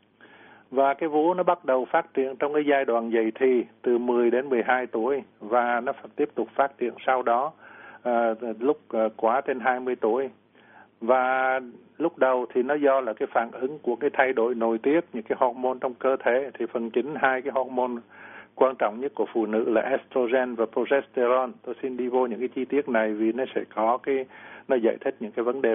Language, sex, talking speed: Vietnamese, male, 215 wpm